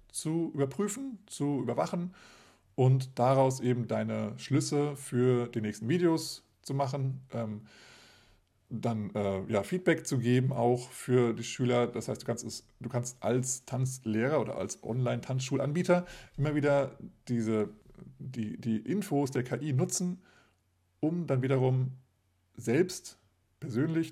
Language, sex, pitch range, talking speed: German, male, 110-135 Hz, 130 wpm